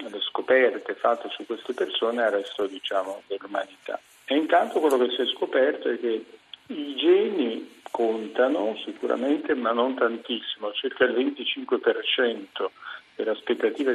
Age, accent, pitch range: 50-69, native, 115-185 Hz